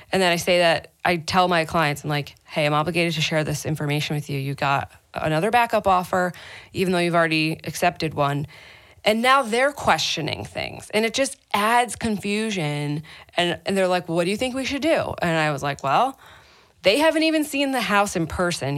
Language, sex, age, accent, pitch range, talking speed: English, female, 20-39, American, 150-190 Hz, 210 wpm